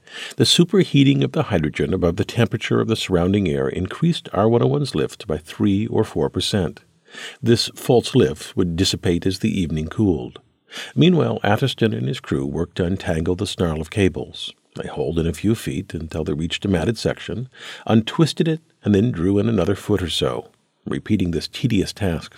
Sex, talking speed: male, 180 wpm